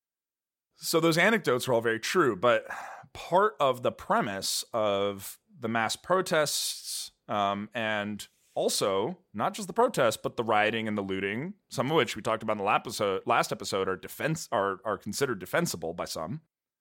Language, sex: English, male